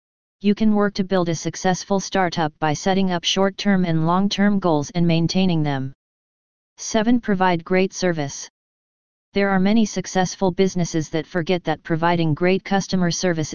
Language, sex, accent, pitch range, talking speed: English, female, American, 165-195 Hz, 150 wpm